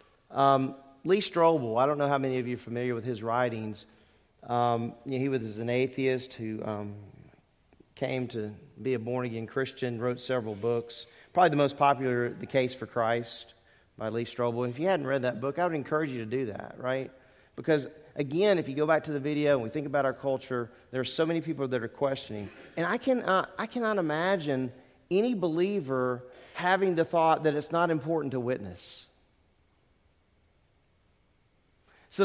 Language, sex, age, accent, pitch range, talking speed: English, male, 40-59, American, 120-155 Hz, 190 wpm